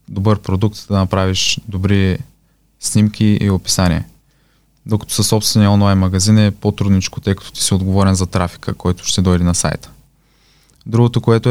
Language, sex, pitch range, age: Bulgarian, male, 95-120 Hz, 20-39